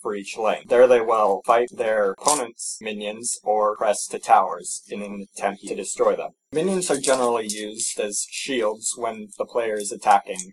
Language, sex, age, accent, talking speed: English, male, 20-39, American, 175 wpm